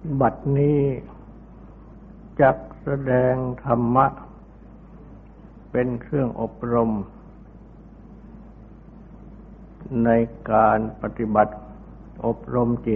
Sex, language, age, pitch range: male, Thai, 60-79, 105-125 Hz